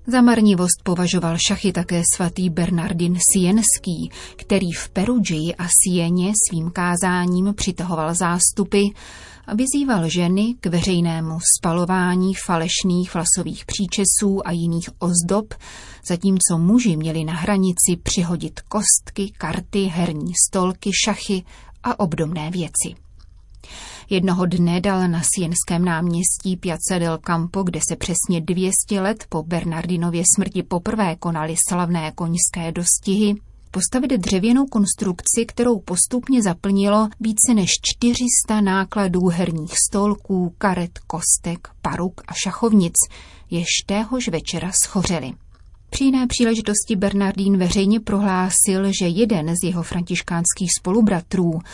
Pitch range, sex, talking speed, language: 170-200 Hz, female, 110 wpm, Czech